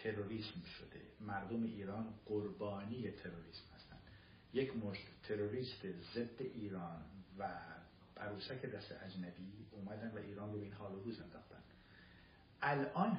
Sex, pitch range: male, 95-115 Hz